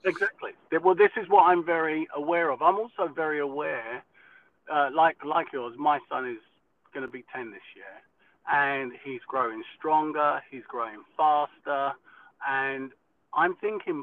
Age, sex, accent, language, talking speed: 40-59, male, British, English, 155 wpm